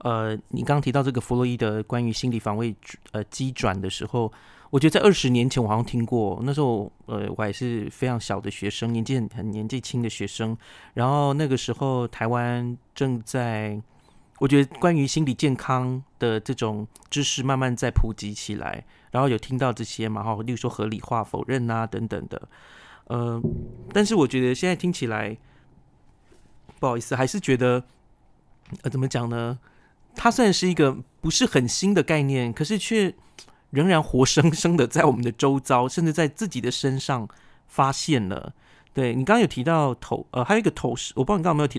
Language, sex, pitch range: Chinese, male, 115-145 Hz